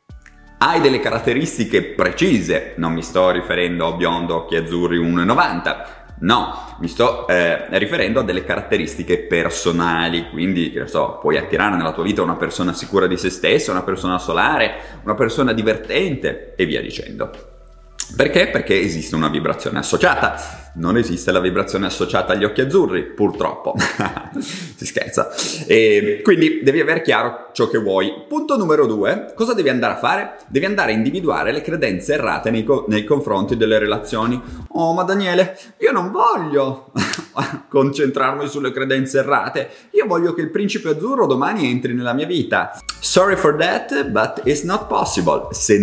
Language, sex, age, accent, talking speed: Italian, male, 30-49, native, 155 wpm